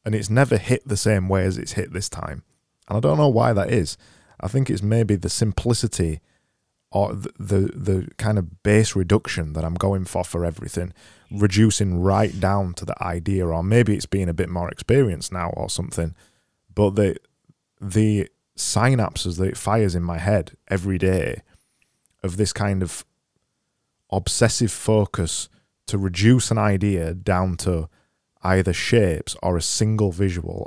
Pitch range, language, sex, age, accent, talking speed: 90-110 Hz, English, male, 20-39, British, 170 wpm